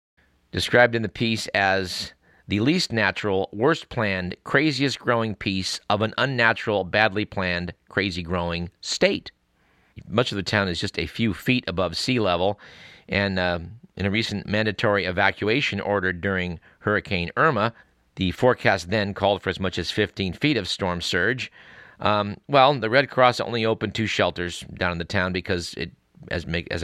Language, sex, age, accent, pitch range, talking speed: English, male, 50-69, American, 90-115 Hz, 165 wpm